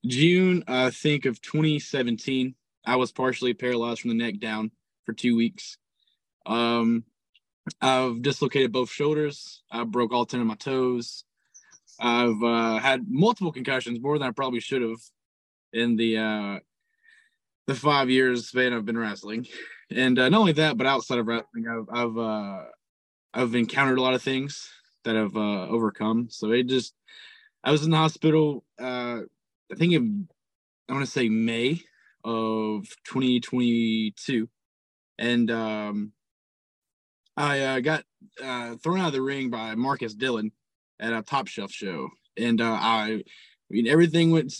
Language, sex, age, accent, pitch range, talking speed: English, male, 20-39, American, 115-140 Hz, 155 wpm